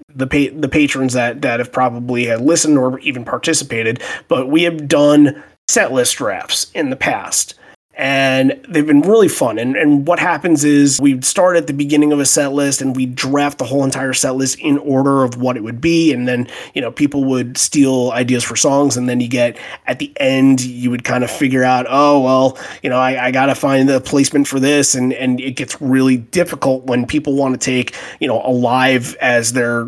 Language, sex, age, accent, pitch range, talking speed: English, male, 30-49, American, 130-160 Hz, 220 wpm